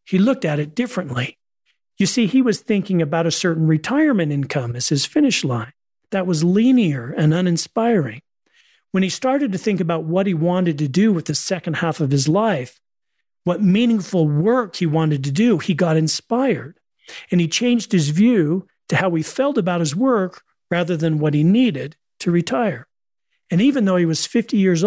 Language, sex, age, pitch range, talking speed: English, male, 40-59, 155-215 Hz, 190 wpm